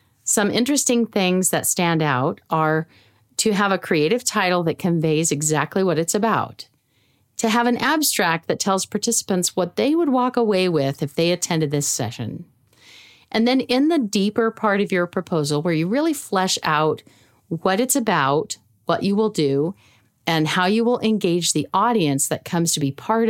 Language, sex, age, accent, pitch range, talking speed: English, female, 40-59, American, 145-210 Hz, 180 wpm